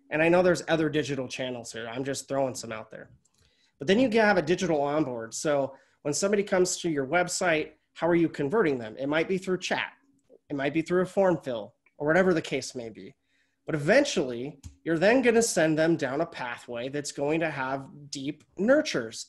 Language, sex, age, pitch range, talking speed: English, male, 30-49, 140-185 Hz, 210 wpm